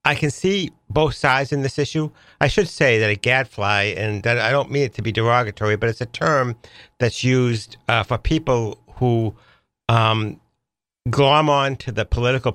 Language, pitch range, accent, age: English, 105-130 Hz, American, 60-79